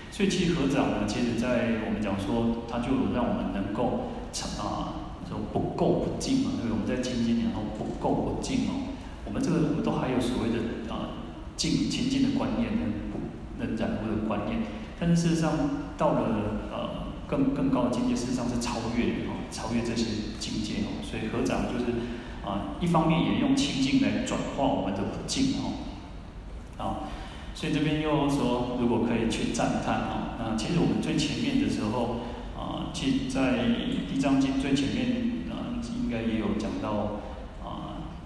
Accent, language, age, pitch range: native, Chinese, 30-49, 105-150 Hz